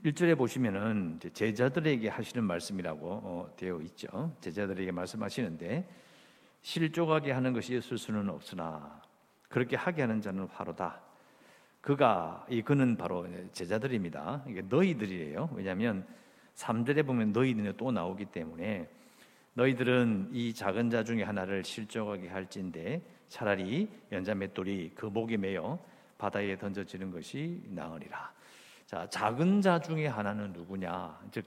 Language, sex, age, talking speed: English, male, 50-69, 115 wpm